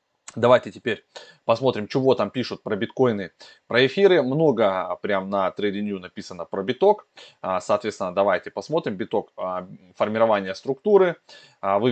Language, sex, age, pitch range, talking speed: Russian, male, 20-39, 100-130 Hz, 120 wpm